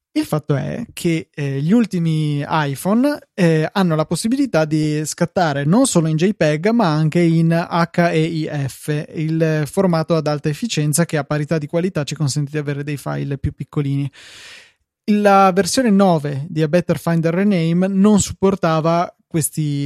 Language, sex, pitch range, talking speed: Italian, male, 150-175 Hz, 155 wpm